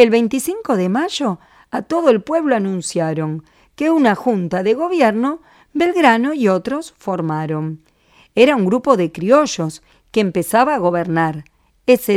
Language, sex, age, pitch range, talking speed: Spanish, female, 50-69, 175-285 Hz, 140 wpm